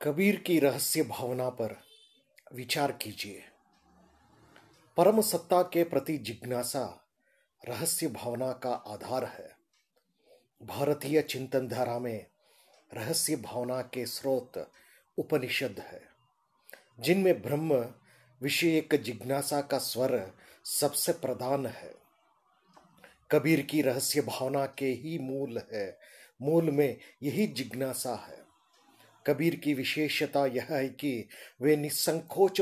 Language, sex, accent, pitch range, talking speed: Hindi, male, native, 125-155 Hz, 105 wpm